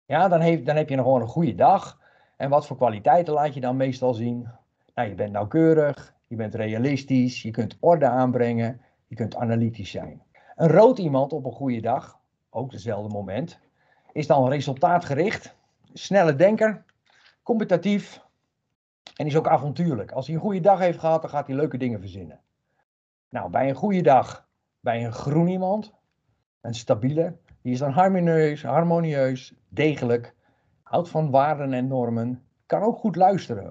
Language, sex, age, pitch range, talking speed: Dutch, male, 50-69, 125-160 Hz, 165 wpm